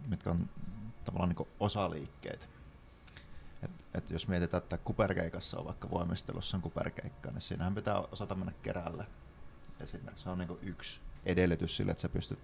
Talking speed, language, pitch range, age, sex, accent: 140 wpm, Finnish, 80-95 Hz, 30-49, male, native